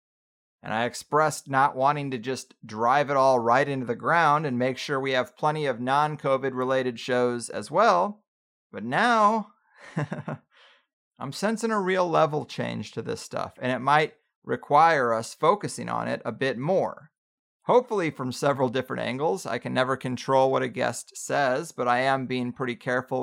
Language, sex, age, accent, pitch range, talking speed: English, male, 30-49, American, 130-180 Hz, 170 wpm